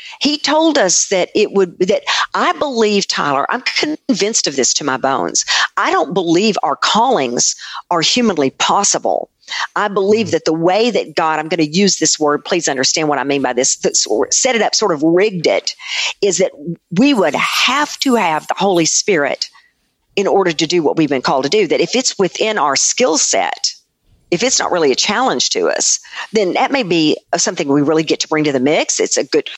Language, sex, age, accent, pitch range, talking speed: English, female, 50-69, American, 155-265 Hz, 210 wpm